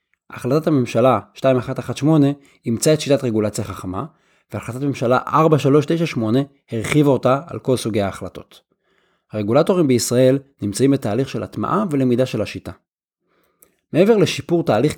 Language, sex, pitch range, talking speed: Hebrew, male, 110-155 Hz, 115 wpm